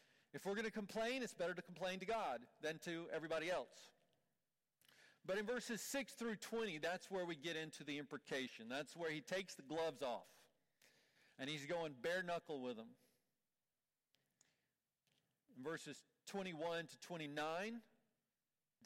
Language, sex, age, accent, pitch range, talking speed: English, male, 40-59, American, 160-235 Hz, 150 wpm